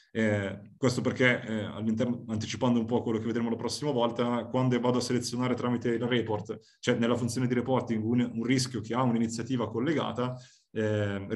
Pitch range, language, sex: 115-130 Hz, Italian, male